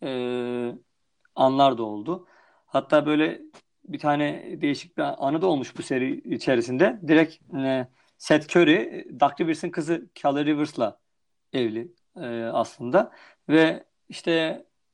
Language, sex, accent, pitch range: Turkish, male, native, 130-170 Hz